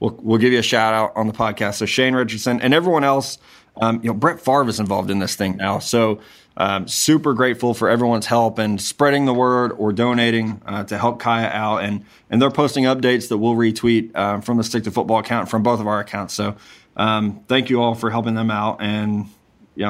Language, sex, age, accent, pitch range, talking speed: English, male, 20-39, American, 110-125 Hz, 230 wpm